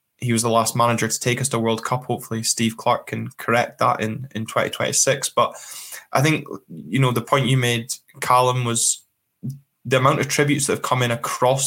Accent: British